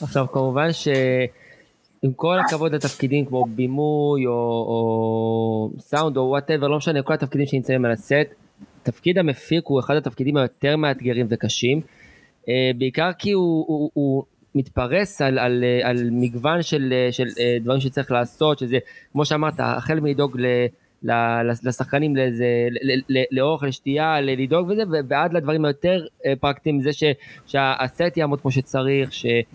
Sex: male